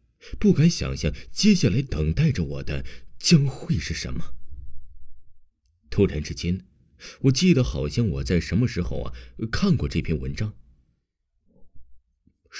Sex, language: male, Chinese